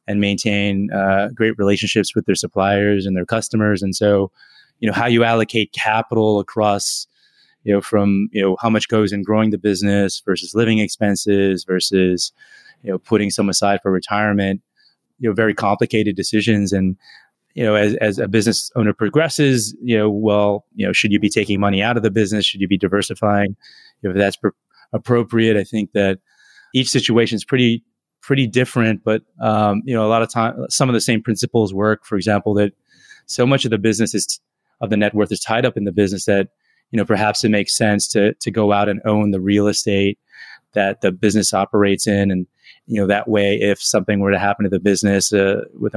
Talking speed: 210 wpm